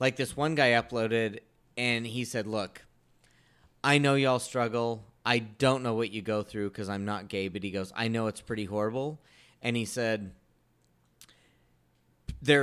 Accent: American